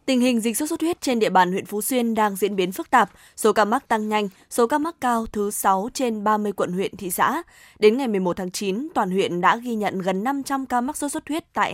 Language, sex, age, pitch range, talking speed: Vietnamese, female, 20-39, 195-245 Hz, 265 wpm